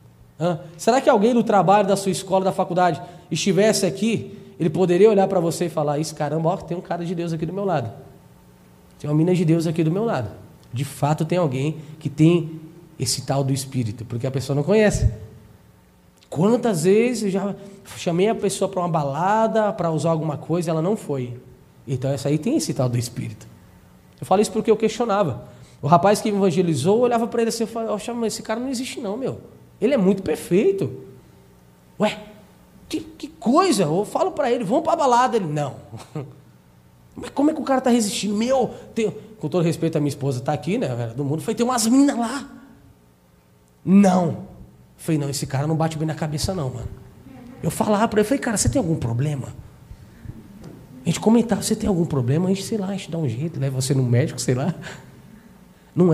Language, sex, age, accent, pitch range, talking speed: Portuguese, male, 20-39, Brazilian, 140-210 Hz, 210 wpm